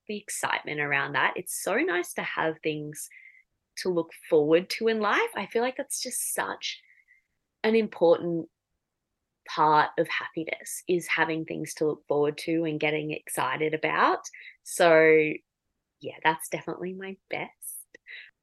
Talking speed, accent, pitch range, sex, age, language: 145 wpm, Australian, 155-230 Hz, female, 20-39, English